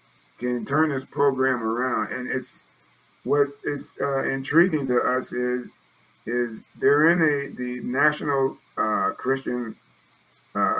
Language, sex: English, male